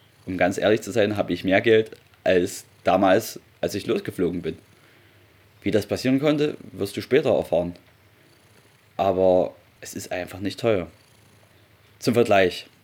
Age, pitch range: 30-49, 95-115 Hz